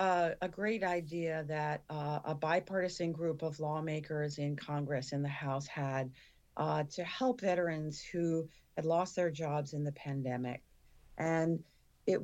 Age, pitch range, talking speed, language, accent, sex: 40-59, 140-160 Hz, 150 wpm, English, American, female